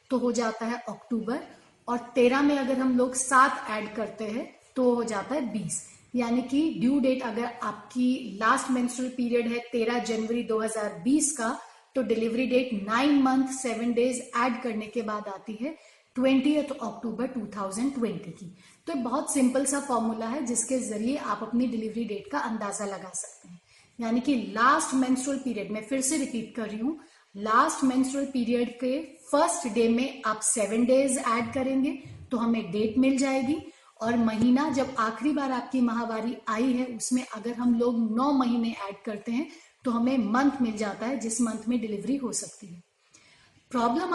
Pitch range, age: 225-265 Hz, 30-49